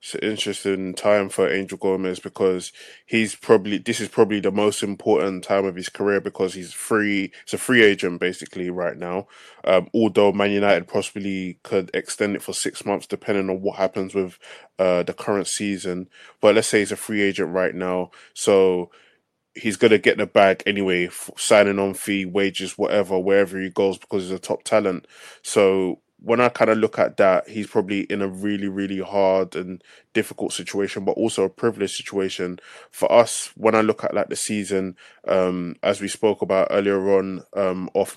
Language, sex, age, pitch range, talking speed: English, male, 20-39, 95-110 Hz, 190 wpm